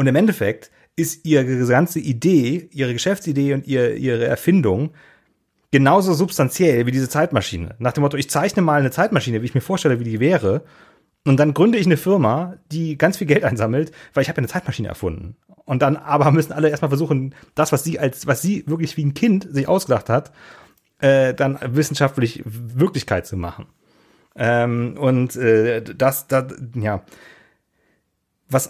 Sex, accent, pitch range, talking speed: male, German, 120-150 Hz, 165 wpm